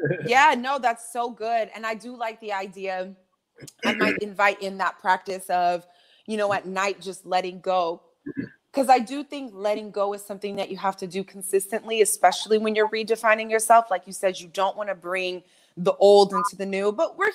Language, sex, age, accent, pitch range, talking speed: English, female, 20-39, American, 185-225 Hz, 205 wpm